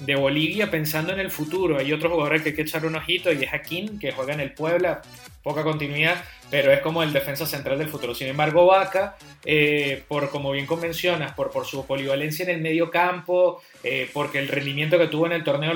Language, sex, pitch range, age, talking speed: English, male, 145-175 Hz, 20-39, 215 wpm